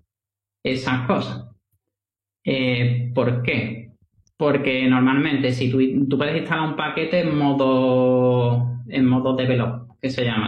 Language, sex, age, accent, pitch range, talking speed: Spanish, male, 30-49, Spanish, 120-145 Hz, 125 wpm